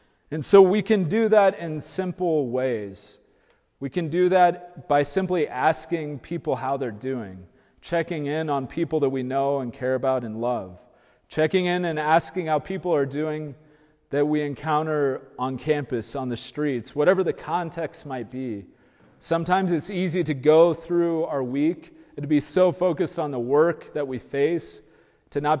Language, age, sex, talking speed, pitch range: English, 30-49, male, 175 wpm, 125-165 Hz